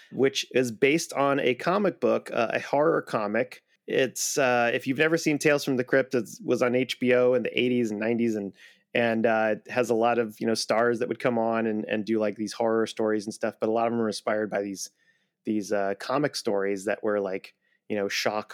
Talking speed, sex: 235 wpm, male